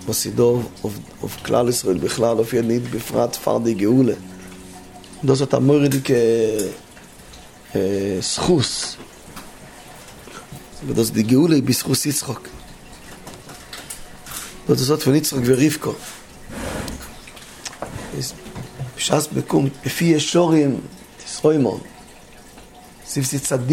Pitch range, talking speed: 115-150 Hz, 45 wpm